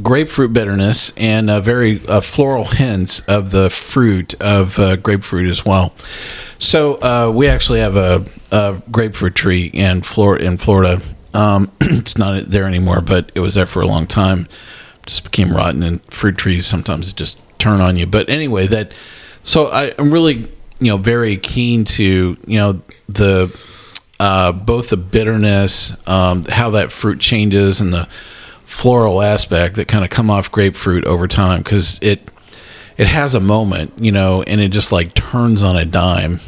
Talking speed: 175 wpm